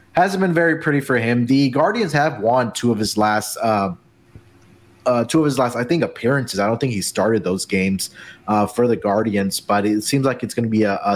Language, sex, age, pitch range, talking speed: English, male, 30-49, 105-125 Hz, 235 wpm